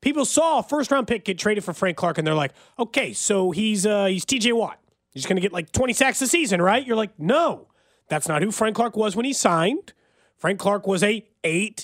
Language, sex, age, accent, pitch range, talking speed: English, male, 30-49, American, 160-235 Hz, 240 wpm